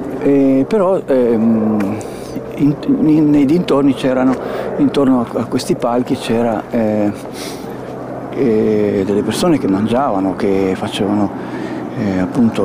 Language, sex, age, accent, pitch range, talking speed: Italian, male, 50-69, native, 110-150 Hz, 115 wpm